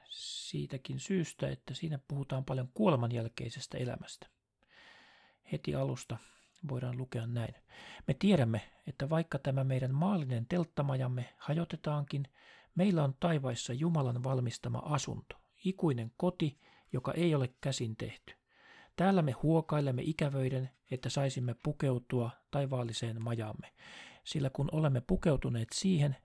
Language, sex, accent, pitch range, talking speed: Finnish, male, native, 125-155 Hz, 110 wpm